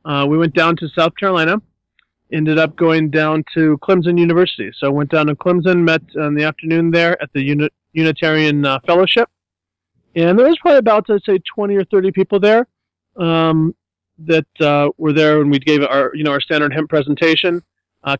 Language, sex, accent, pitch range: English, male, American, 135-165 Hz